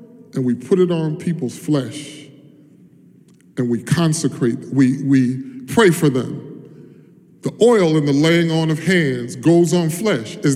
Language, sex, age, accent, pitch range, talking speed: English, male, 30-49, American, 150-225 Hz, 155 wpm